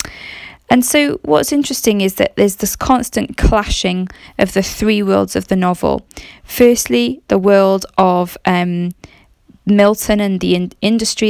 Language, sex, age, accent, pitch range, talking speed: English, female, 10-29, British, 180-210 Hz, 140 wpm